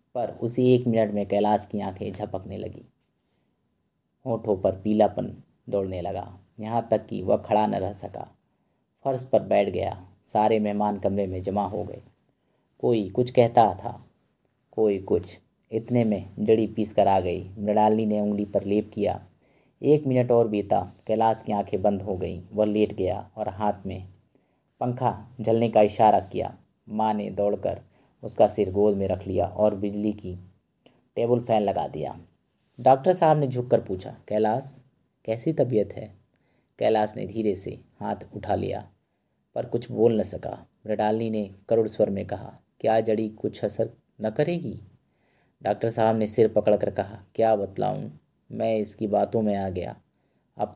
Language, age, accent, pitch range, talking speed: Hindi, 30-49, native, 100-115 Hz, 165 wpm